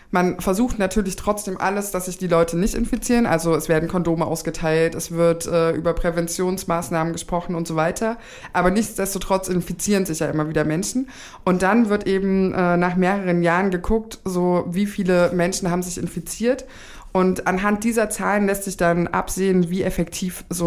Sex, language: female, German